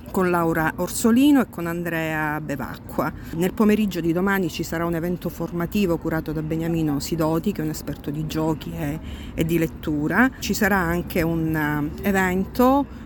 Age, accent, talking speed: 50-69, native, 155 wpm